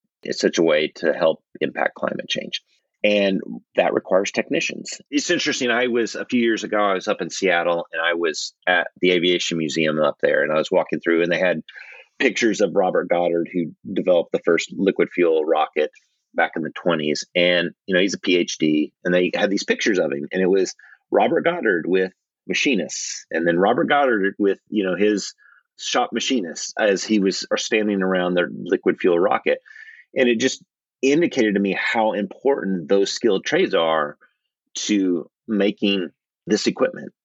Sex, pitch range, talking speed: male, 90-140 Hz, 185 wpm